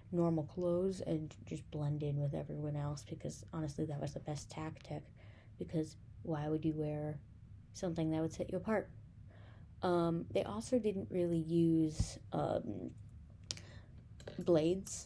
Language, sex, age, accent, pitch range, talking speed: English, female, 20-39, American, 145-180 Hz, 140 wpm